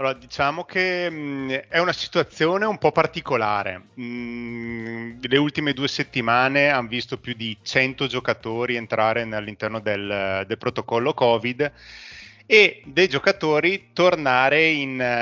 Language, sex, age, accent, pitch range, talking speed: Italian, male, 30-49, native, 115-145 Hz, 125 wpm